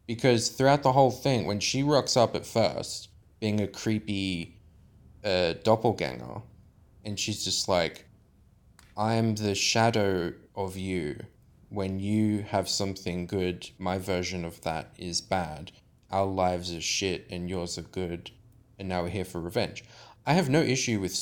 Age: 20-39